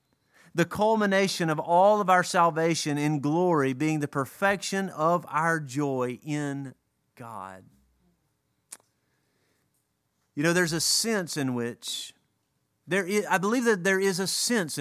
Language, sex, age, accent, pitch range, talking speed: English, male, 40-59, American, 125-175 Hz, 125 wpm